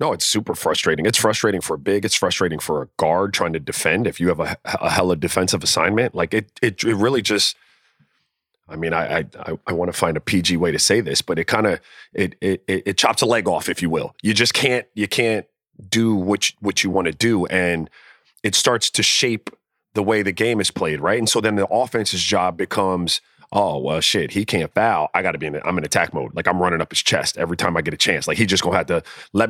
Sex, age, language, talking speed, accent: male, 30-49, English, 255 wpm, American